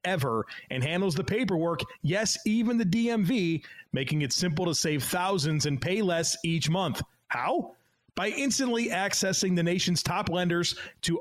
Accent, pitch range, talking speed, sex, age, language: American, 150-185 Hz, 155 wpm, male, 30-49, English